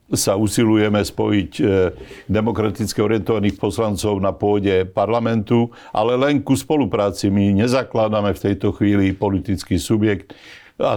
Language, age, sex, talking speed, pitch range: Slovak, 60-79, male, 115 wpm, 105-125 Hz